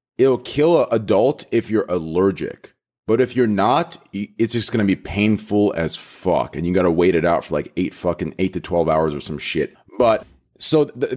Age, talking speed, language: 30-49, 205 wpm, English